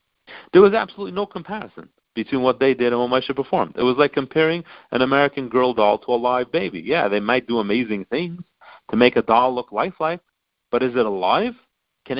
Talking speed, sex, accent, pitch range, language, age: 205 wpm, male, American, 110-150 Hz, English, 40-59